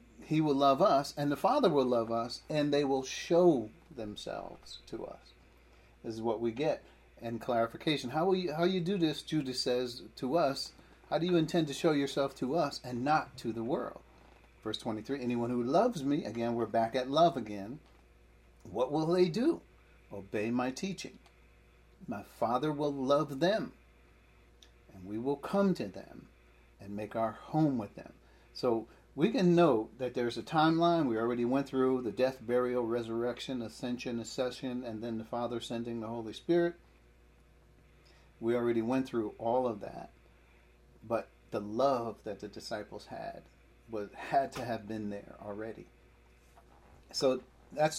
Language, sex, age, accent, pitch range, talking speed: English, male, 40-59, American, 105-140 Hz, 165 wpm